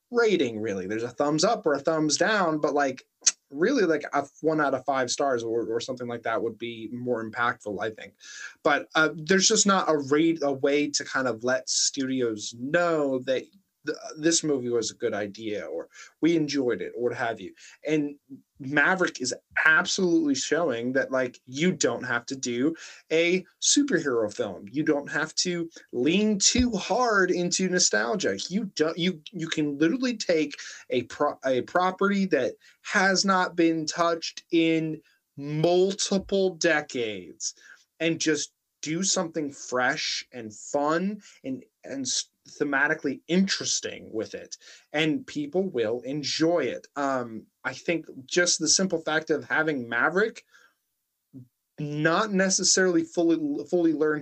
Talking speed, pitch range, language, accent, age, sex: 150 wpm, 130-175 Hz, English, American, 20-39, male